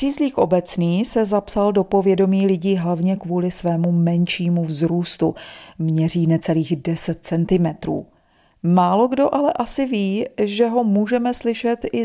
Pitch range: 170-215 Hz